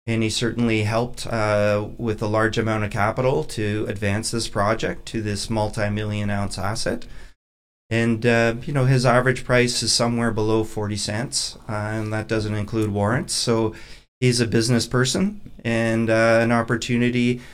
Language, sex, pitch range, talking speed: English, male, 105-120 Hz, 160 wpm